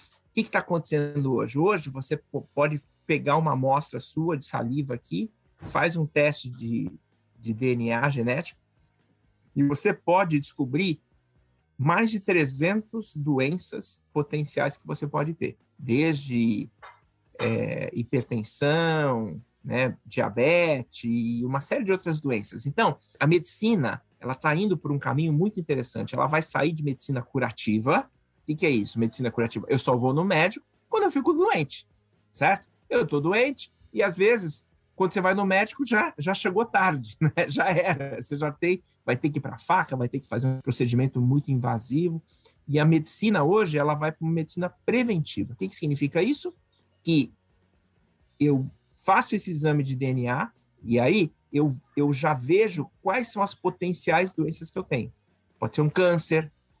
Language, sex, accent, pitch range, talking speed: Portuguese, male, Brazilian, 125-175 Hz, 165 wpm